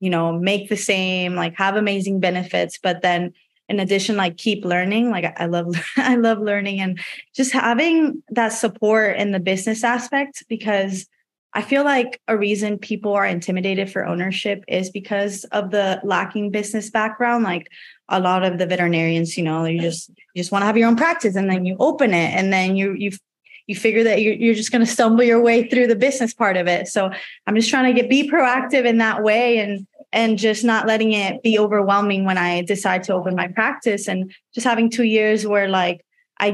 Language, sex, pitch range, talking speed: English, female, 190-225 Hz, 210 wpm